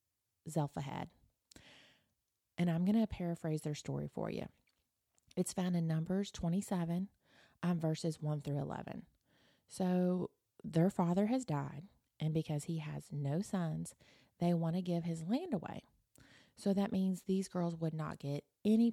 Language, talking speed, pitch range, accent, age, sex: English, 150 wpm, 150-195 Hz, American, 30-49, female